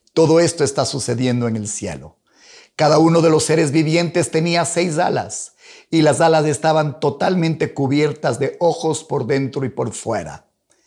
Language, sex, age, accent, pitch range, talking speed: Spanish, male, 50-69, Mexican, 135-165 Hz, 160 wpm